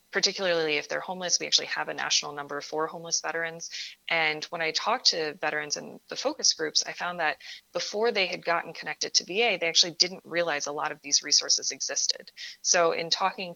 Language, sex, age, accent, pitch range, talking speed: English, female, 20-39, American, 155-190 Hz, 205 wpm